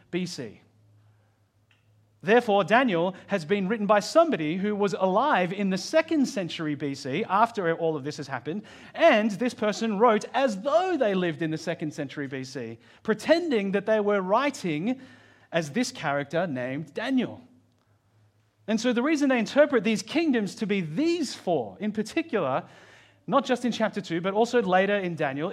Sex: male